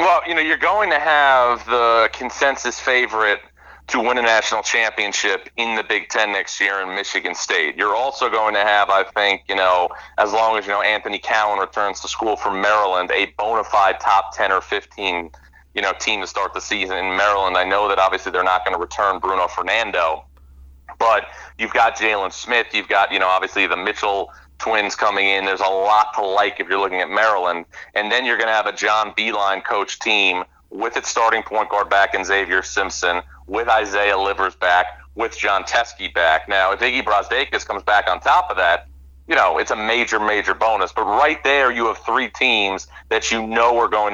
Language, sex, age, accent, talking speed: English, male, 40-59, American, 210 wpm